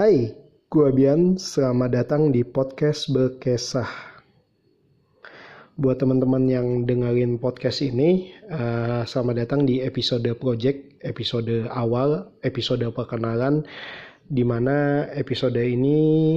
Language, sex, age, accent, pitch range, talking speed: Indonesian, male, 20-39, native, 120-145 Hz, 95 wpm